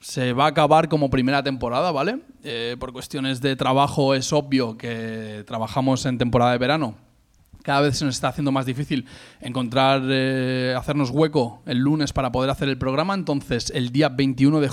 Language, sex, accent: Spanish, male, Spanish